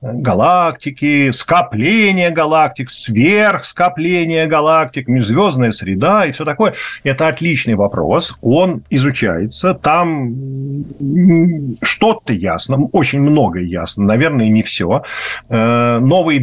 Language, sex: Russian, male